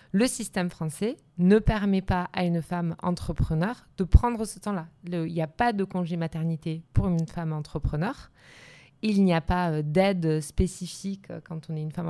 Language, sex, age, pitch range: French, female, 20-39, 160-190 Hz